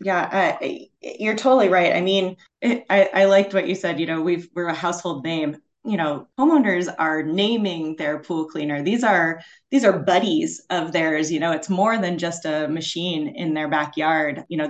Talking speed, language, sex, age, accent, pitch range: 205 wpm, English, female, 30-49, American, 155-195 Hz